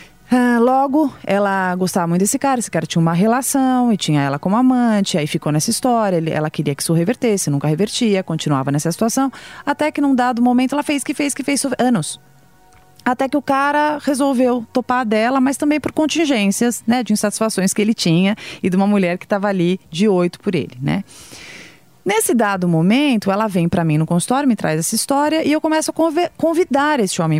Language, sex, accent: Portuguese, female, Brazilian